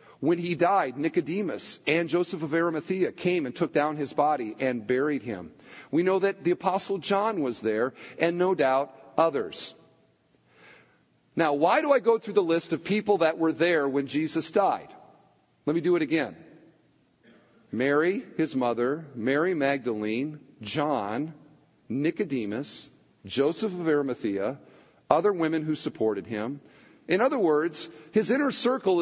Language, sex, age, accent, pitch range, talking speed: English, male, 50-69, American, 160-255 Hz, 145 wpm